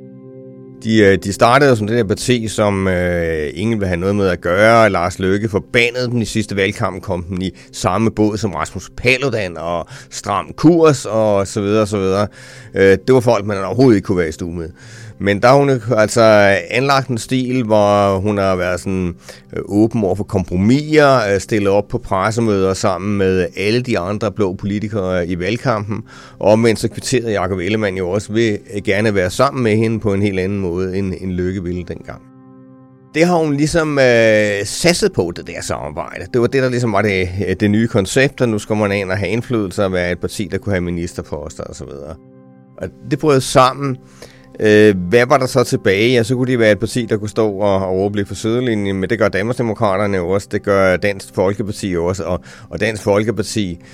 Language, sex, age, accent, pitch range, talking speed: English, male, 30-49, Danish, 90-115 Hz, 190 wpm